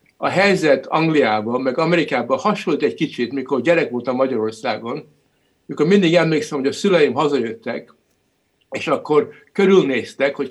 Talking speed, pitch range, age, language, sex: 130 wpm, 130-170 Hz, 60-79, Hungarian, male